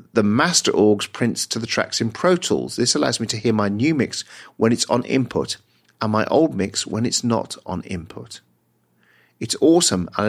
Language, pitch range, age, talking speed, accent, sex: English, 105-140 Hz, 40-59, 200 wpm, British, male